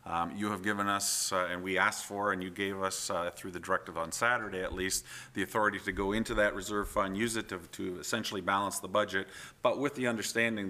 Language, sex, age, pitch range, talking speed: English, male, 40-59, 90-105 Hz, 235 wpm